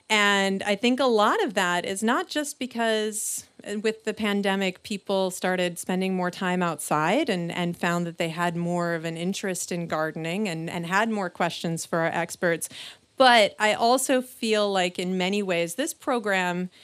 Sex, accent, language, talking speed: female, American, English, 180 wpm